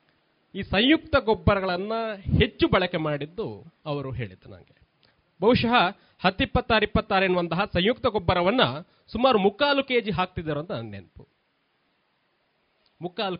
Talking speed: 105 wpm